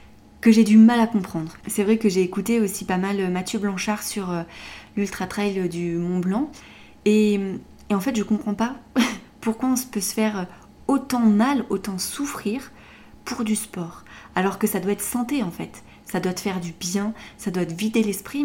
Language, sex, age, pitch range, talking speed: French, female, 30-49, 185-230 Hz, 195 wpm